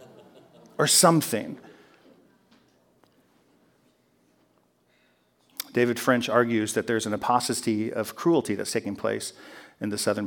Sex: male